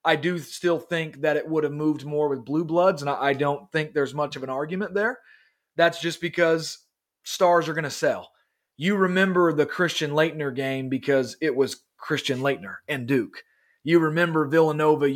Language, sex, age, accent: English, male, 30-49, American